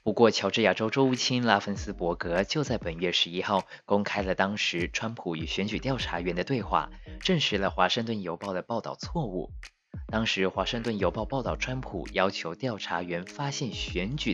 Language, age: Chinese, 20-39